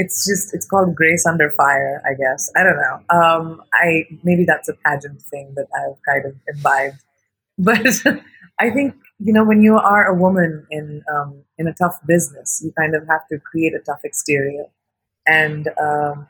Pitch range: 150-170 Hz